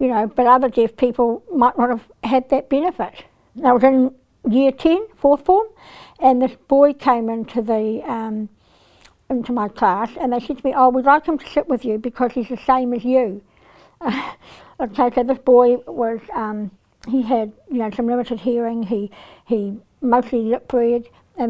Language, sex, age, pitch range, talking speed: English, female, 60-79, 230-265 Hz, 185 wpm